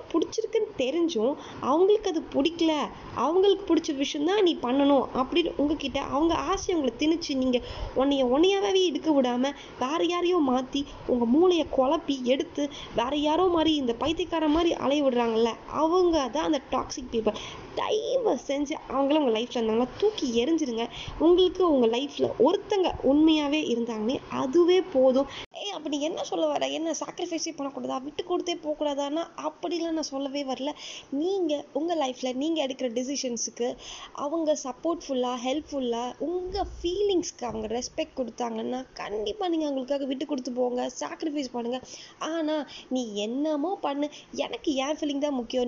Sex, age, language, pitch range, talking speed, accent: female, 20-39, Tamil, 260-330 Hz, 130 wpm, native